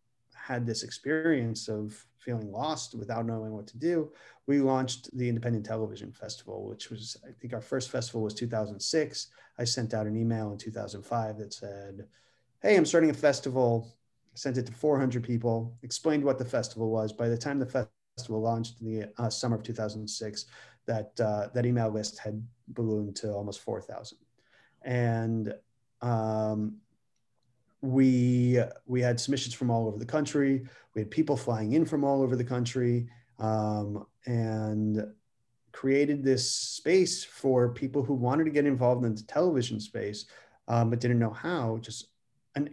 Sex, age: male, 30-49